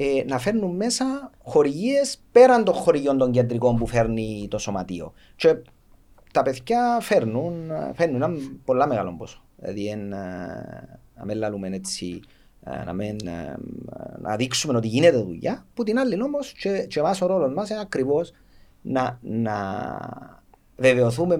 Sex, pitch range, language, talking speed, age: male, 110-155 Hz, Greek, 125 wpm, 40-59